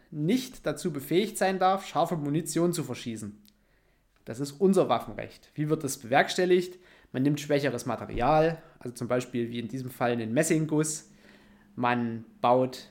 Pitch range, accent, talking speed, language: 135-190 Hz, German, 155 wpm, German